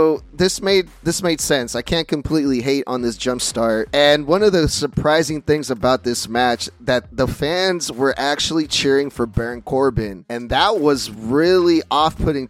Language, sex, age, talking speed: English, male, 30-49, 175 wpm